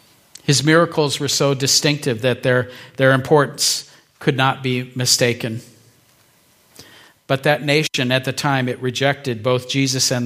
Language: English